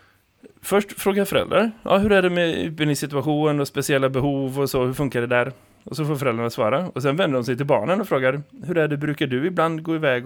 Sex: male